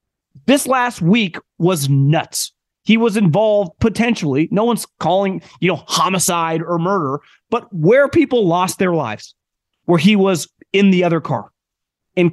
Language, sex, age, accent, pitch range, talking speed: English, male, 30-49, American, 170-235 Hz, 150 wpm